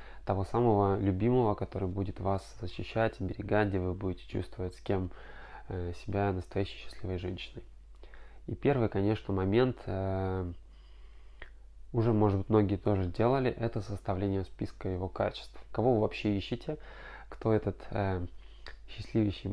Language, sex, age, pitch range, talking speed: Russian, male, 20-39, 95-115 Hz, 125 wpm